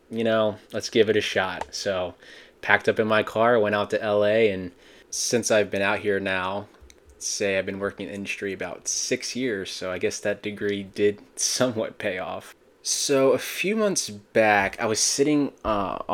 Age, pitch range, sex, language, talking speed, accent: 20-39, 95-105 Hz, male, English, 190 wpm, American